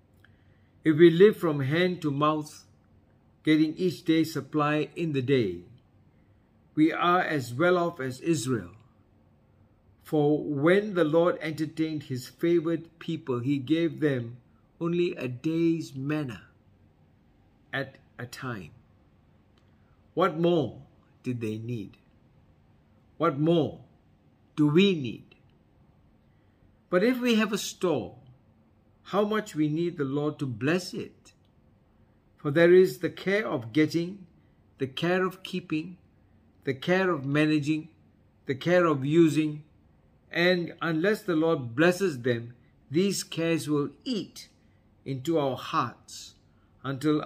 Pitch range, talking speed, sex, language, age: 105-165 Hz, 125 wpm, male, English, 60-79